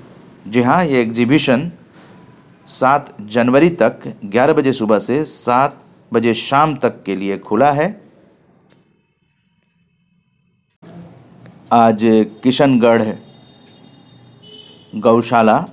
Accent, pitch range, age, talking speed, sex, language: native, 100-125 Hz, 50-69, 85 wpm, male, Hindi